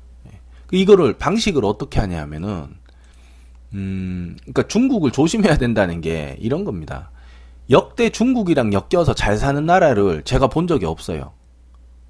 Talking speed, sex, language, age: 110 wpm, male, English, 40-59